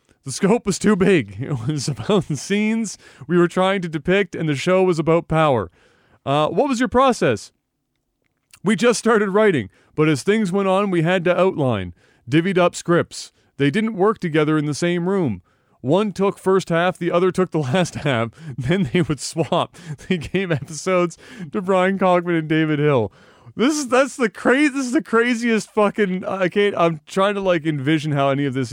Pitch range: 145-195 Hz